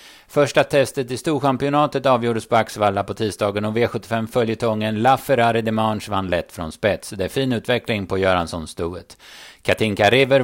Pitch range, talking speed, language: 105-130 Hz, 160 wpm, Swedish